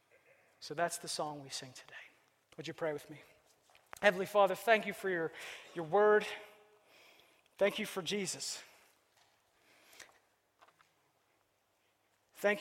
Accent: American